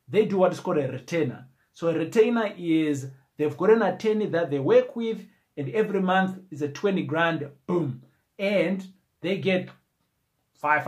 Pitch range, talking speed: 145-210 Hz, 170 wpm